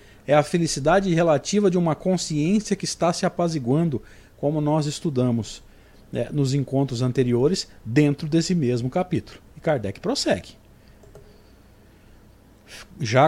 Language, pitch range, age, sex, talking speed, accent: Portuguese, 120-165 Hz, 50-69, male, 115 wpm, Brazilian